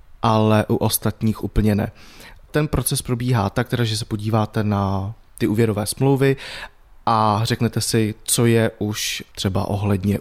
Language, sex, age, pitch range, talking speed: Czech, male, 30-49, 105-120 Hz, 145 wpm